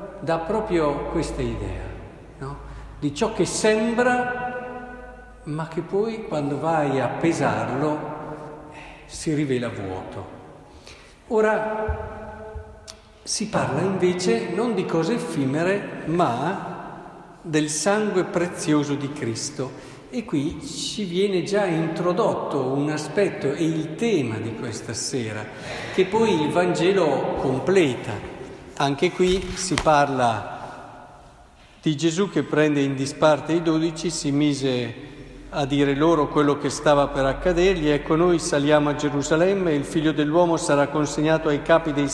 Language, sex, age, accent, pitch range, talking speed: Italian, male, 50-69, native, 145-180 Hz, 125 wpm